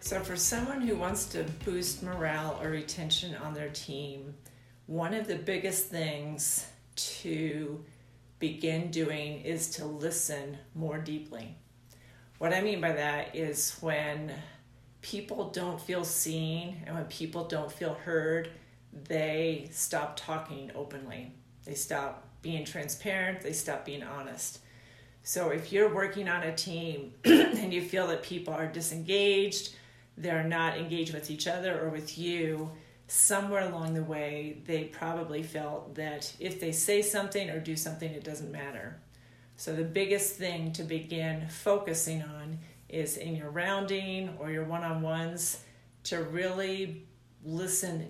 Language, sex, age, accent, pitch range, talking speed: English, female, 40-59, American, 150-175 Hz, 140 wpm